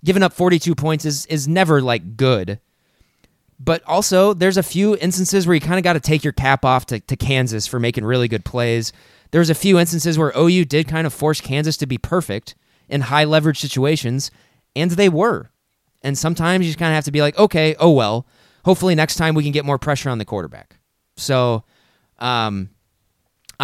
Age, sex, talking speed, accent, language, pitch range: 20-39, male, 205 wpm, American, English, 125-160 Hz